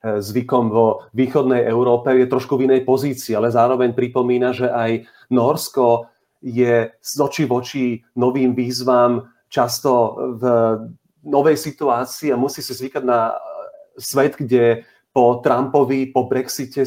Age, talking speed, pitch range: 40-59, 130 wpm, 120-140 Hz